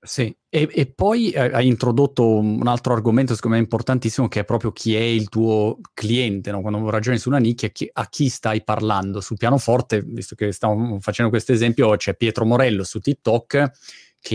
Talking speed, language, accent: 195 wpm, Italian, native